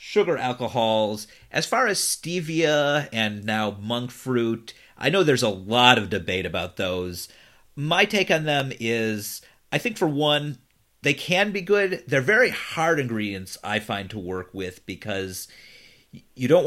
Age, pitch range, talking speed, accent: 40-59, 105-145 Hz, 160 wpm, American